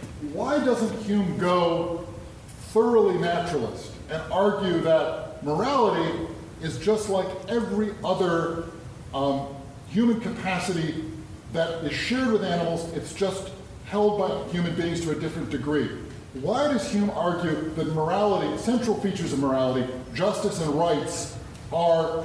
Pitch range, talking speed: 140-185 Hz, 125 wpm